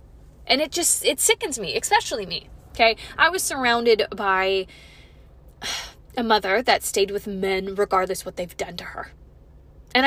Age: 20-39